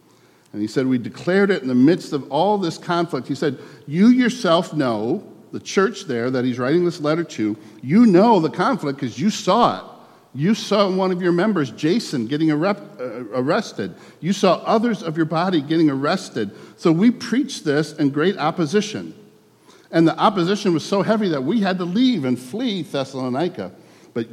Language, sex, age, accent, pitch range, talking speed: English, male, 50-69, American, 135-190 Hz, 180 wpm